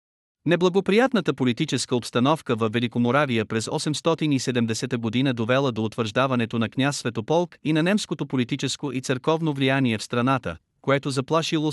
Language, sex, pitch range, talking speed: Bulgarian, male, 120-145 Hz, 130 wpm